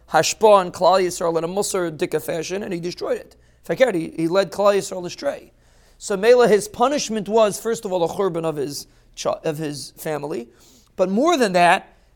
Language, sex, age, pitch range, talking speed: English, male, 40-59, 165-215 Hz, 190 wpm